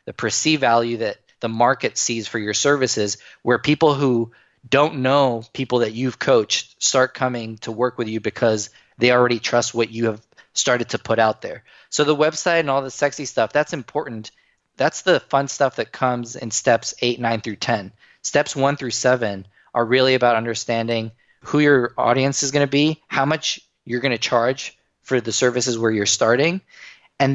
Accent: American